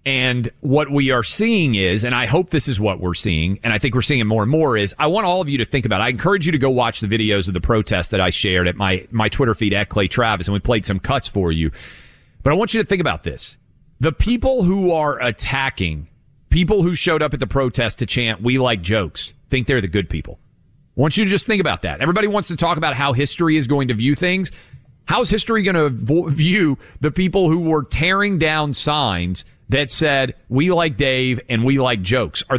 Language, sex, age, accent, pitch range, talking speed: English, male, 40-59, American, 105-155 Hz, 250 wpm